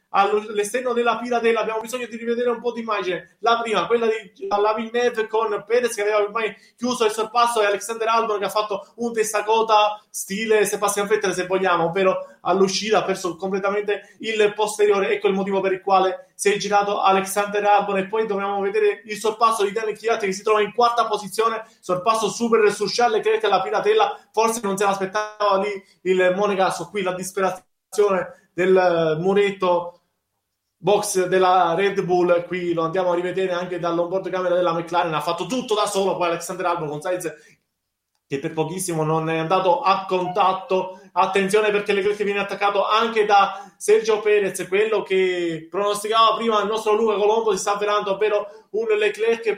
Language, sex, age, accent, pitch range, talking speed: Italian, male, 20-39, native, 185-220 Hz, 175 wpm